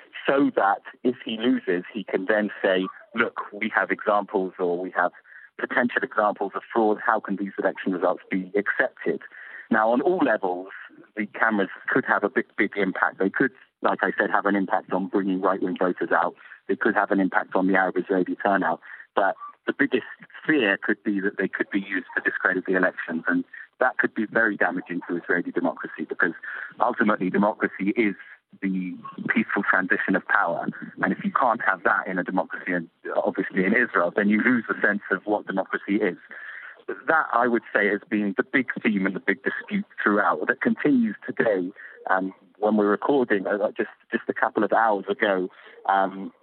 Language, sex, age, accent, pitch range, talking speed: English, male, 40-59, British, 95-110 Hz, 190 wpm